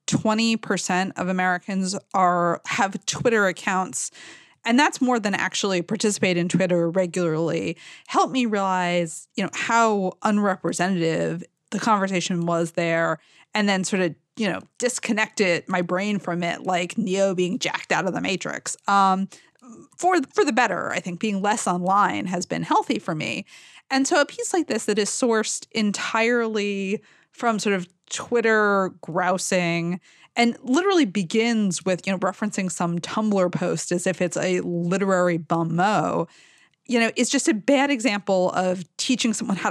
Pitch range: 180-230 Hz